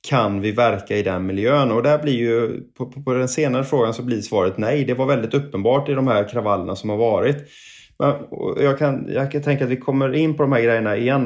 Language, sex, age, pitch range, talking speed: Swedish, male, 20-39, 105-135 Hz, 240 wpm